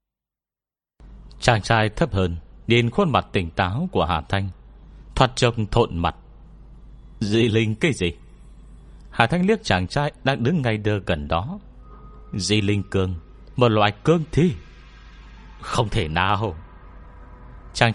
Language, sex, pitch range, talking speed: Vietnamese, male, 90-130 Hz, 140 wpm